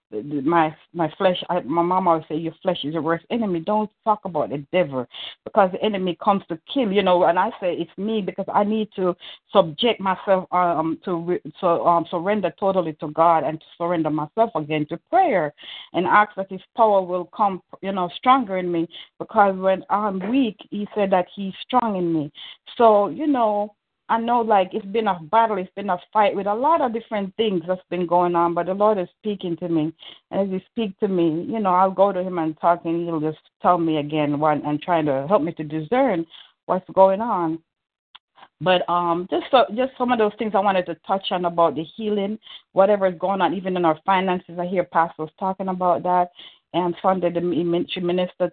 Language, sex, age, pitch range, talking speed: English, female, 60-79, 170-205 Hz, 215 wpm